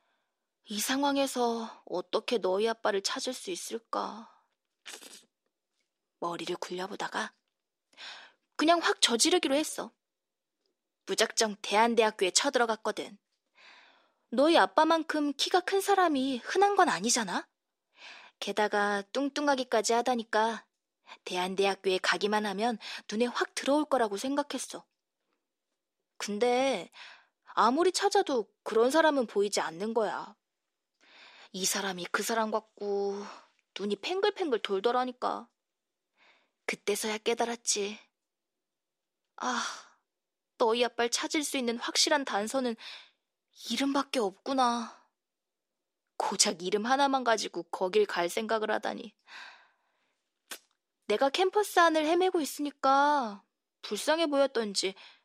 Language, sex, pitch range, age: Korean, female, 210-290 Hz, 20-39